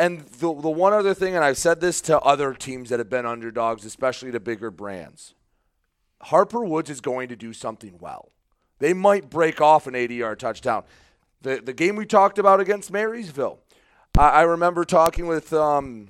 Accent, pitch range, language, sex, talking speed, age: American, 120-160 Hz, English, male, 190 wpm, 30-49